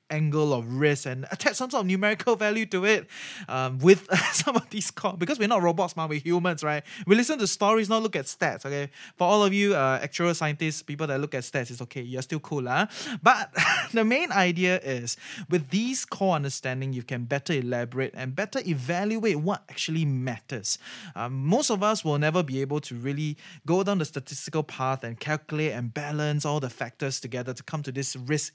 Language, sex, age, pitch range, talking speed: English, male, 20-39, 135-190 Hz, 215 wpm